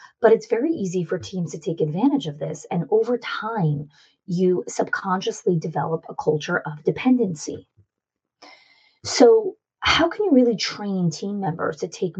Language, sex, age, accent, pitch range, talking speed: English, female, 30-49, American, 160-200 Hz, 150 wpm